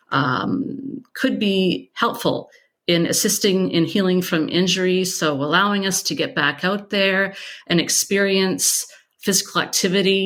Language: English